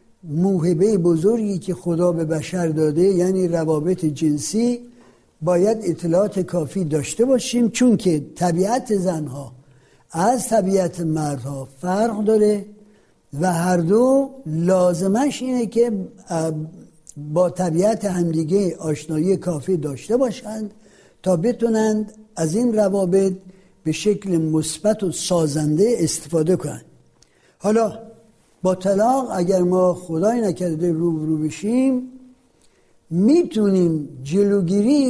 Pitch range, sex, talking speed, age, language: 165-225 Hz, male, 105 wpm, 60-79, Persian